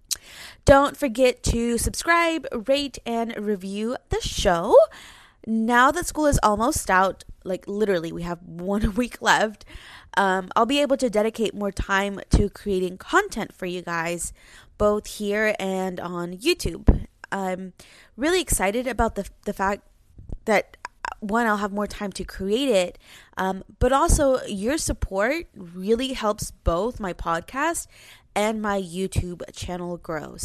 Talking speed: 145 wpm